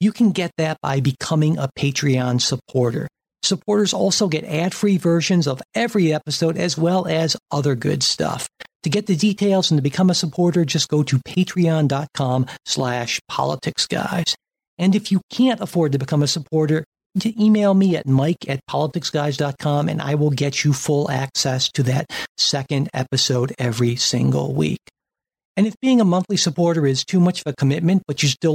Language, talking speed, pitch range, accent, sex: English, 170 wpm, 140-180 Hz, American, male